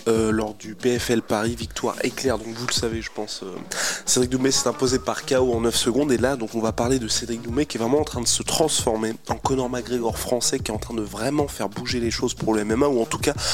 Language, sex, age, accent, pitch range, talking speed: French, male, 20-39, French, 110-135 Hz, 270 wpm